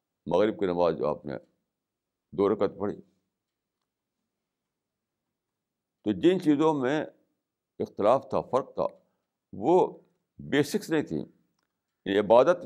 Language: Urdu